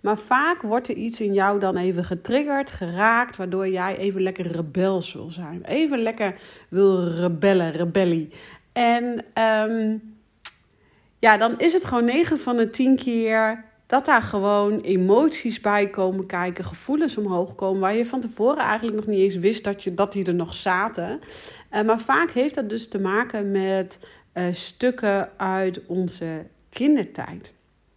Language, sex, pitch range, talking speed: Dutch, female, 180-220 Hz, 160 wpm